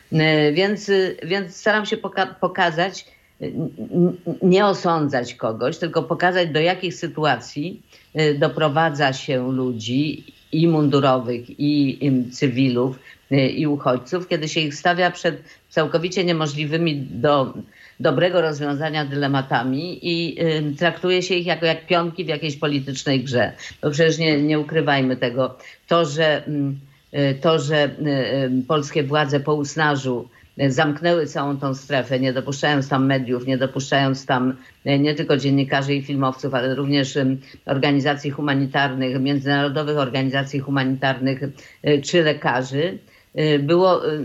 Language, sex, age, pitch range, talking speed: Polish, female, 50-69, 135-165 Hz, 115 wpm